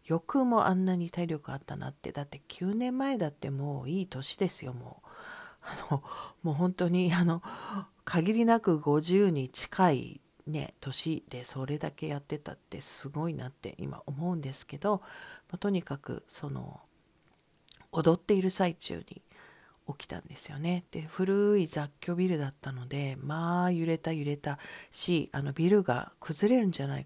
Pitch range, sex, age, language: 145-185 Hz, female, 50-69, Japanese